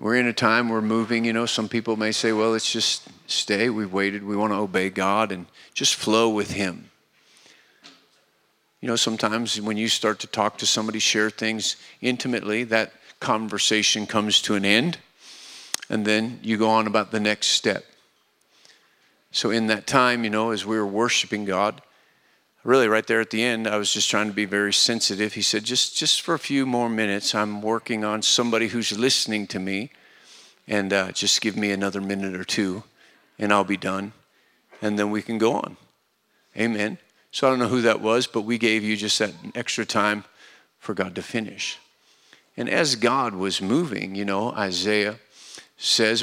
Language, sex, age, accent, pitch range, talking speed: English, male, 50-69, American, 100-115 Hz, 190 wpm